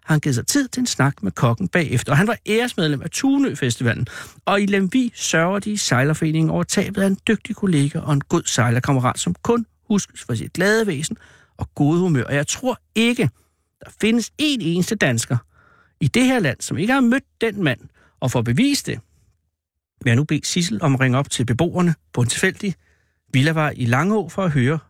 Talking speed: 205 wpm